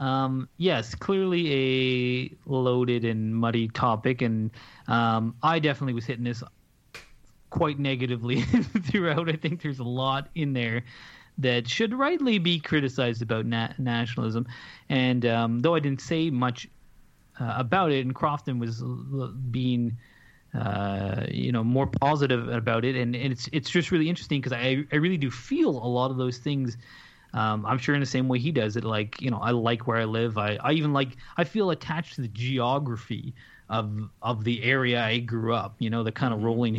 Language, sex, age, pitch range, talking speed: English, male, 30-49, 115-145 Hz, 190 wpm